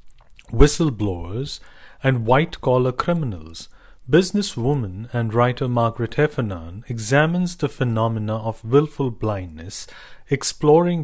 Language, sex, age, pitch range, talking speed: English, male, 40-59, 105-145 Hz, 85 wpm